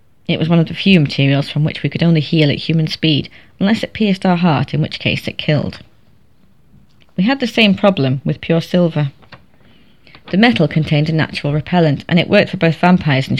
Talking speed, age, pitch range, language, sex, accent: 210 wpm, 30-49, 145-180 Hz, English, female, British